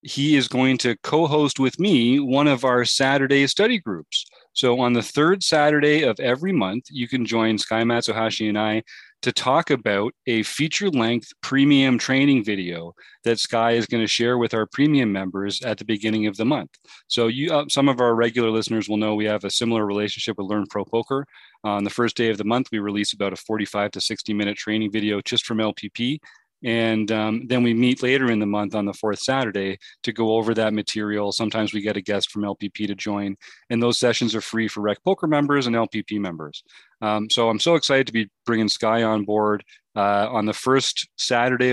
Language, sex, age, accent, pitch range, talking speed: English, male, 40-59, American, 105-125 Hz, 215 wpm